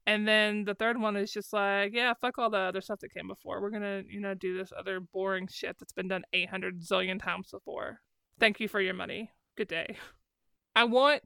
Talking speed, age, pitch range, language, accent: 225 wpm, 20-39, 195-235 Hz, English, American